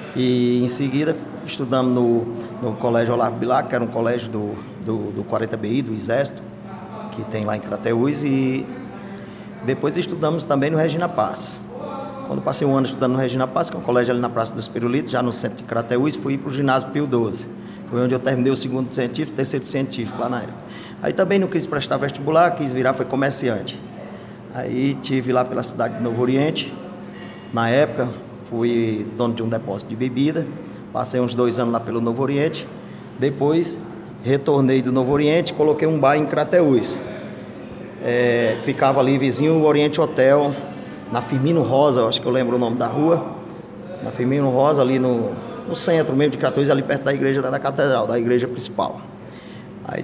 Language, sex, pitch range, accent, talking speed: English, male, 120-145 Hz, Brazilian, 185 wpm